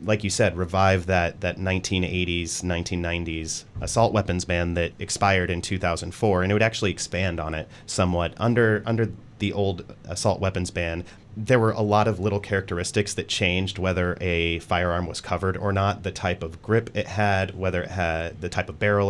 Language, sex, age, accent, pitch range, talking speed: English, male, 30-49, American, 85-100 Hz, 185 wpm